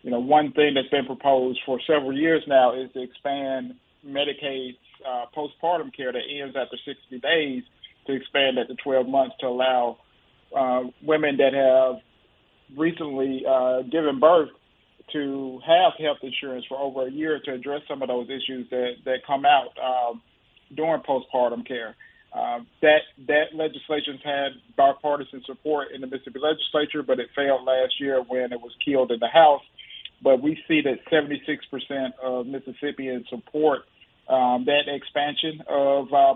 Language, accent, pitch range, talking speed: English, American, 130-150 Hz, 155 wpm